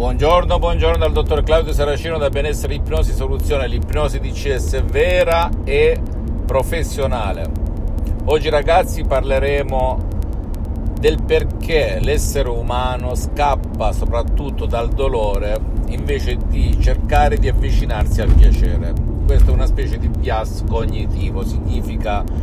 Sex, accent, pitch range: male, native, 75-100 Hz